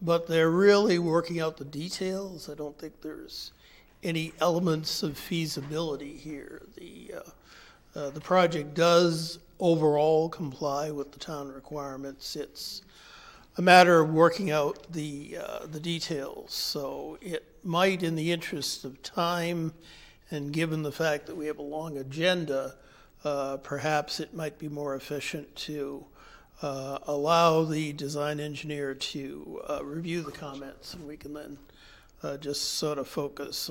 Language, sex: English, male